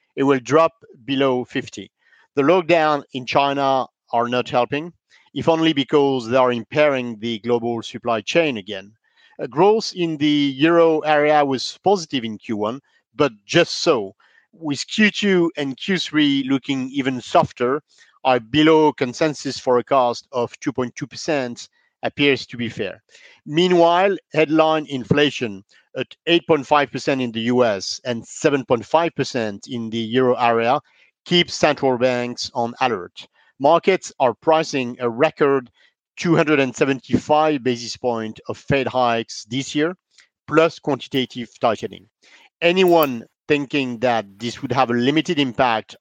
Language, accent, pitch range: English, French, 120-155 Hz